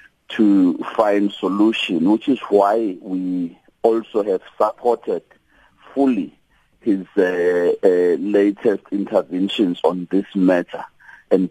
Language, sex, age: English, male, 50-69